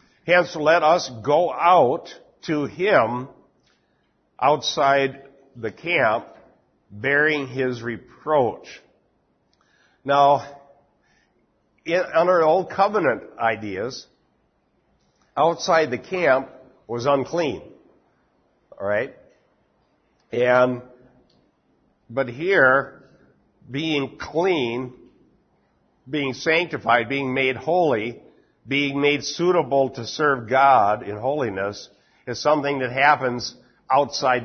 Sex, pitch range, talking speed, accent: male, 120-145 Hz, 80 wpm, American